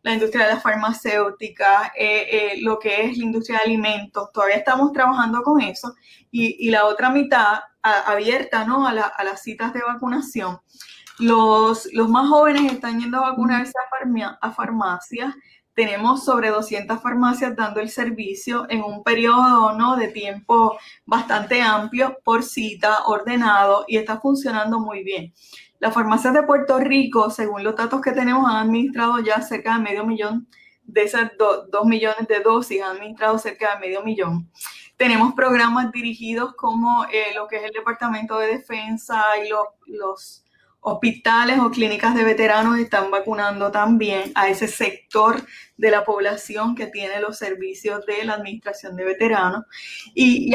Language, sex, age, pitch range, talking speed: Spanish, female, 10-29, 210-245 Hz, 155 wpm